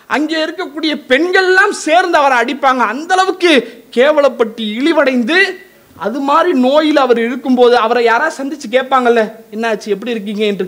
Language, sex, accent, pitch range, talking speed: English, male, Indian, 230-315 Hz, 175 wpm